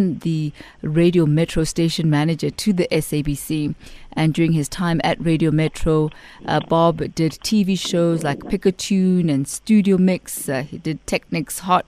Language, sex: English, female